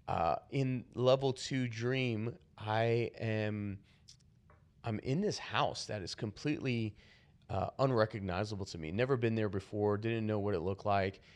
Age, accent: 30-49, American